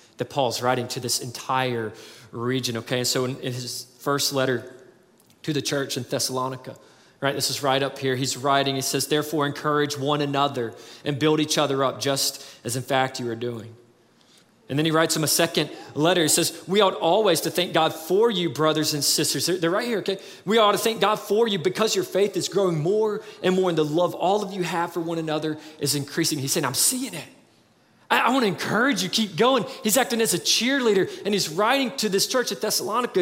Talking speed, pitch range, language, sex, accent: 220 wpm, 140-200 Hz, English, male, American